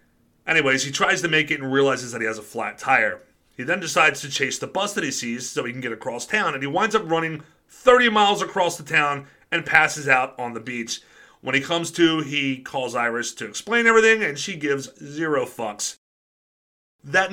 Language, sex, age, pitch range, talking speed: English, male, 30-49, 125-170 Hz, 215 wpm